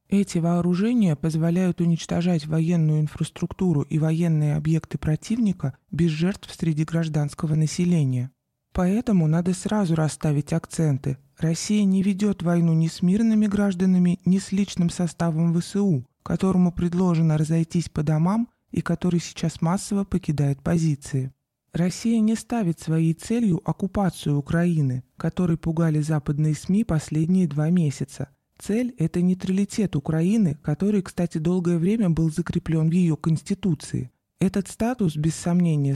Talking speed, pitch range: 125 wpm, 155-185 Hz